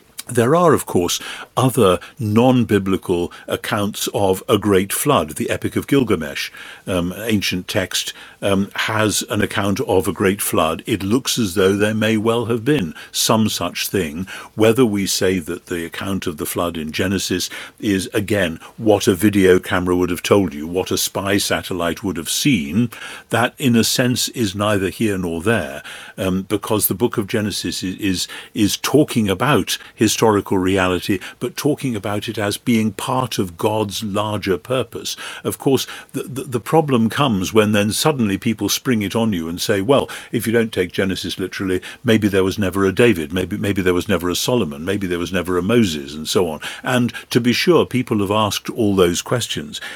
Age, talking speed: 50-69, 185 wpm